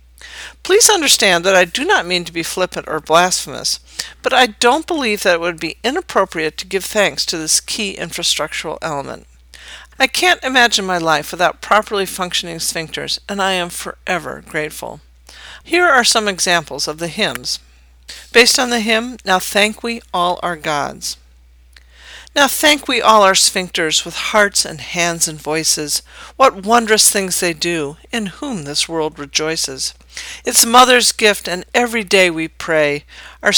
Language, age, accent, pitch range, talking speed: English, 50-69, American, 155-225 Hz, 165 wpm